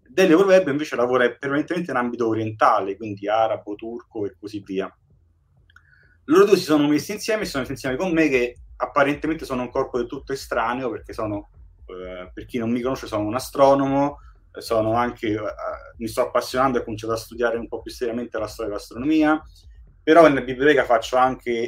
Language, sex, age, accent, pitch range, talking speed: Italian, male, 30-49, native, 115-155 Hz, 185 wpm